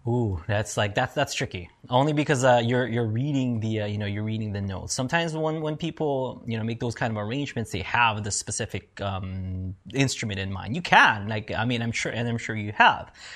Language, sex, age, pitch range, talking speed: English, male, 20-39, 105-140 Hz, 230 wpm